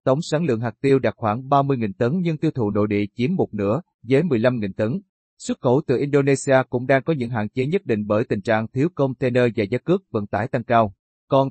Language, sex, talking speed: Vietnamese, male, 235 wpm